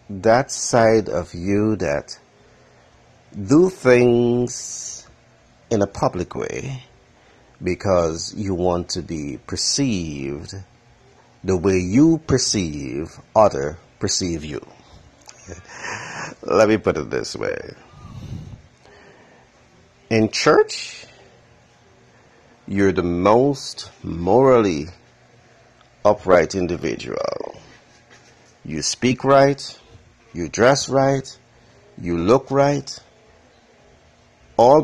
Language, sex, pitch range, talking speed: Filipino, male, 90-120 Hz, 85 wpm